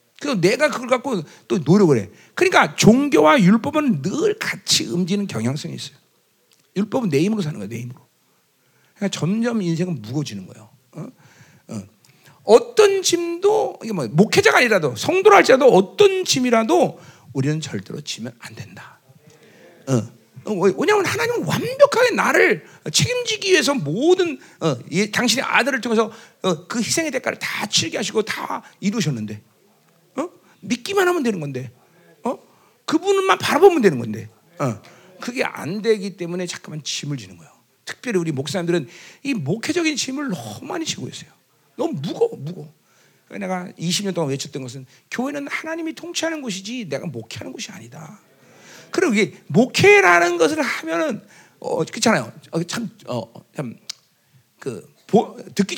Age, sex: 40-59, male